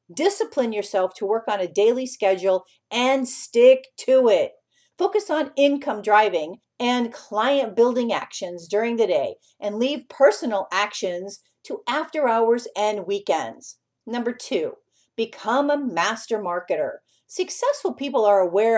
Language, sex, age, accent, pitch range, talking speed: English, female, 50-69, American, 195-275 Hz, 135 wpm